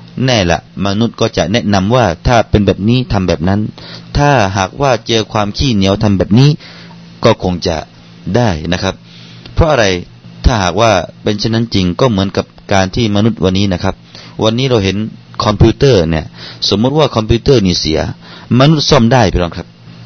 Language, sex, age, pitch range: Thai, male, 30-49, 90-130 Hz